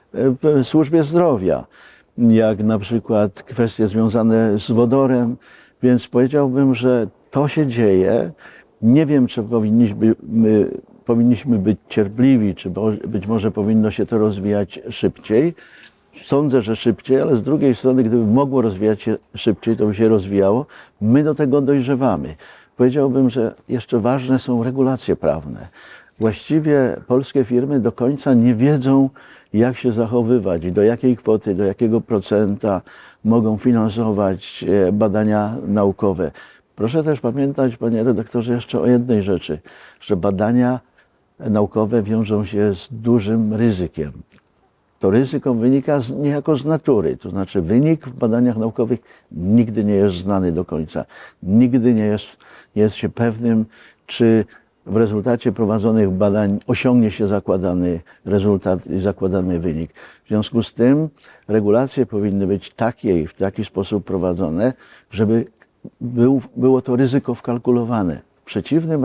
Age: 50-69